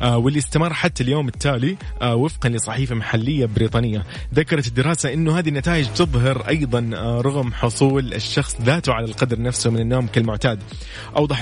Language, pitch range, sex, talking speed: English, 115-145 Hz, male, 140 wpm